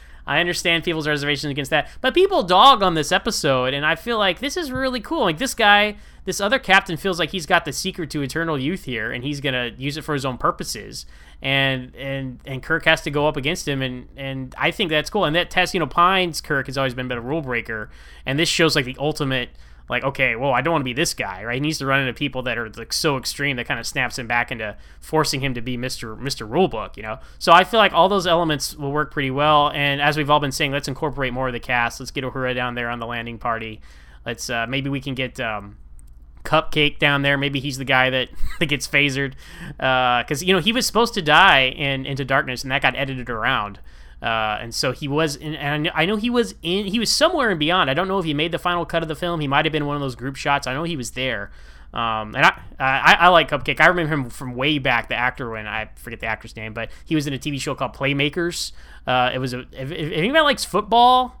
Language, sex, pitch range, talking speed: English, male, 125-165 Hz, 265 wpm